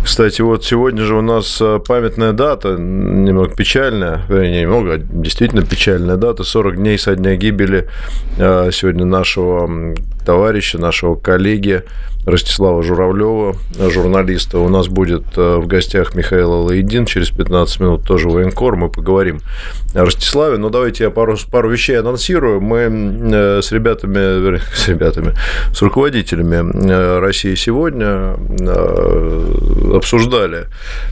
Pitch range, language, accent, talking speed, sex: 85-110 Hz, Russian, native, 120 wpm, male